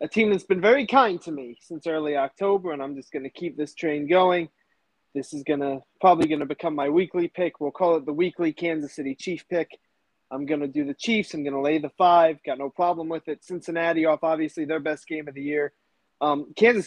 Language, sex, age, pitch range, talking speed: English, male, 20-39, 150-185 Hz, 240 wpm